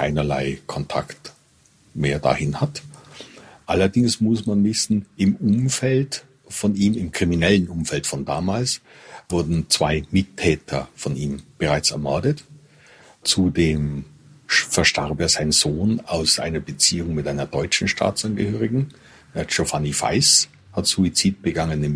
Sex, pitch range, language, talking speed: male, 80-130 Hz, German, 120 wpm